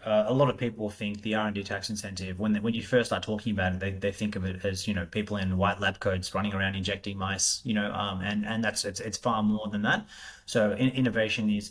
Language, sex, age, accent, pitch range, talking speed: English, male, 20-39, Australian, 105-115 Hz, 265 wpm